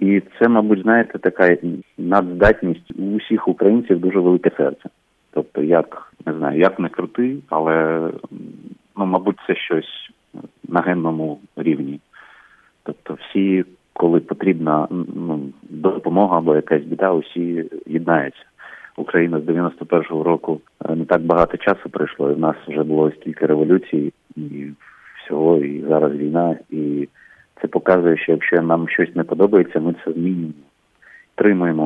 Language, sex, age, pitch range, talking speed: Ukrainian, male, 30-49, 75-90 Hz, 135 wpm